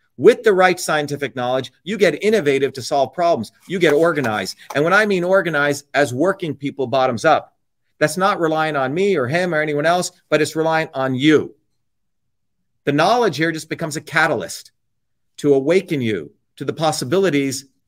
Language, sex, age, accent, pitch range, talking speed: English, male, 40-59, American, 150-200 Hz, 175 wpm